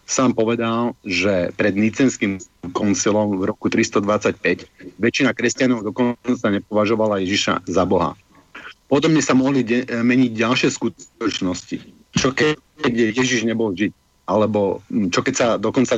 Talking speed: 130 wpm